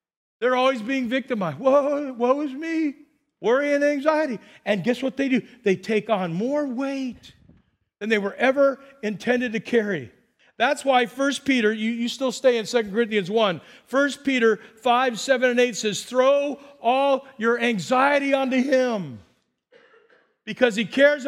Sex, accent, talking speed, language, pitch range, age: male, American, 160 wpm, English, 215-275 Hz, 50-69